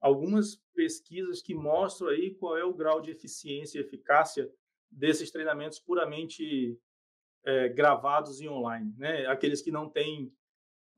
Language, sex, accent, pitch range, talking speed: Portuguese, male, Brazilian, 150-210 Hz, 135 wpm